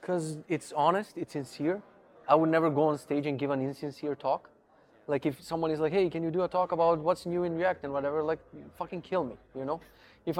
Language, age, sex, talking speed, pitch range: Croatian, 20-39, male, 240 wpm, 140-175 Hz